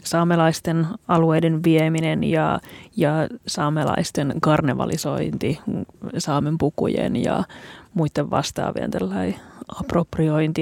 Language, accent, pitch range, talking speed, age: Finnish, native, 160-190 Hz, 75 wpm, 30-49